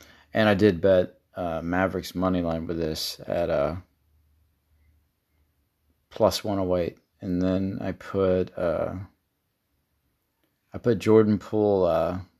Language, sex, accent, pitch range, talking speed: English, male, American, 85-105 Hz, 120 wpm